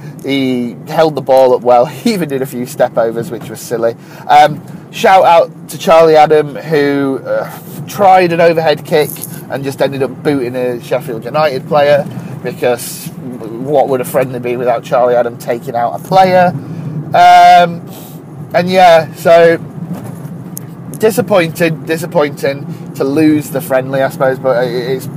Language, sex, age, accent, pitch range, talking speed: English, male, 30-49, British, 130-160 Hz, 155 wpm